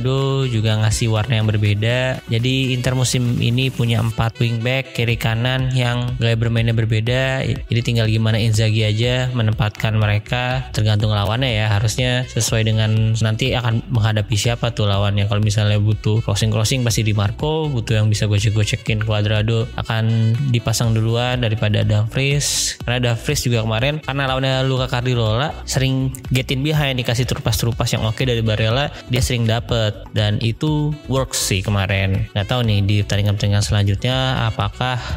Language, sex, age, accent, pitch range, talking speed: Indonesian, male, 20-39, native, 110-130 Hz, 150 wpm